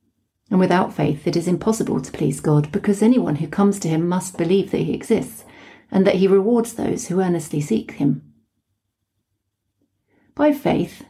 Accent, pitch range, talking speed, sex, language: British, 160-220 Hz, 170 wpm, female, English